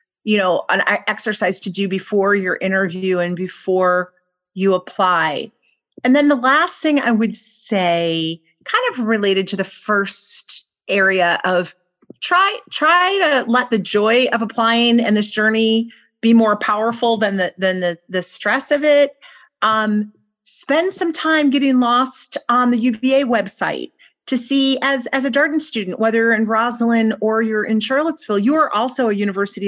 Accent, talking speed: American, 165 wpm